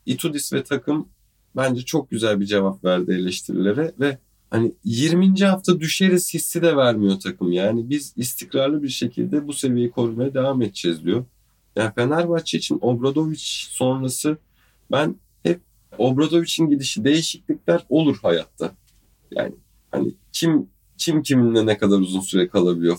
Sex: male